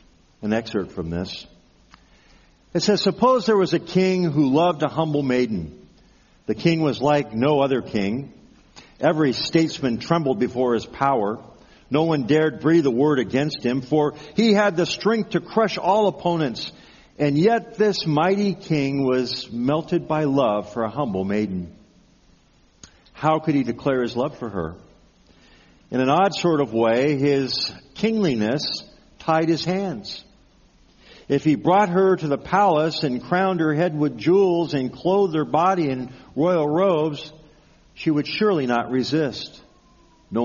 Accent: American